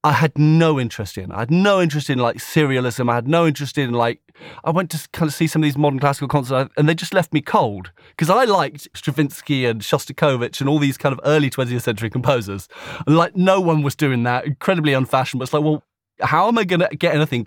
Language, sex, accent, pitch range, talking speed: English, male, British, 135-170 Hz, 235 wpm